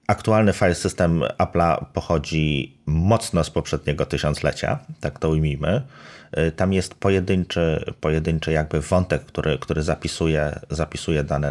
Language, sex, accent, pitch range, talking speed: Polish, male, native, 75-90 Hz, 120 wpm